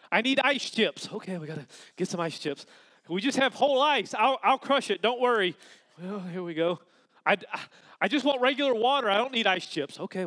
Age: 30-49